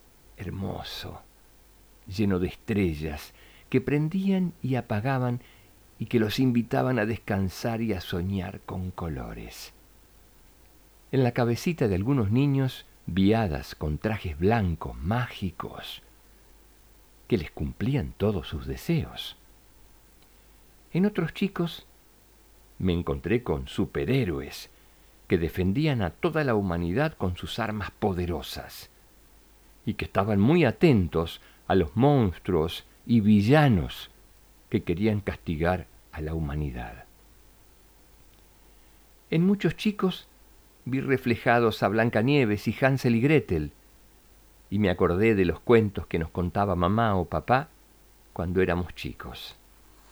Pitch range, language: 85-120 Hz, Spanish